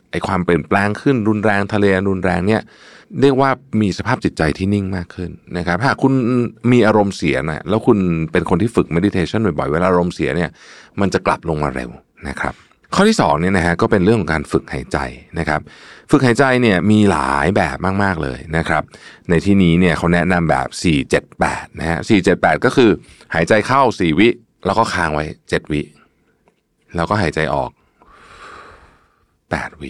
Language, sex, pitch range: Thai, male, 80-105 Hz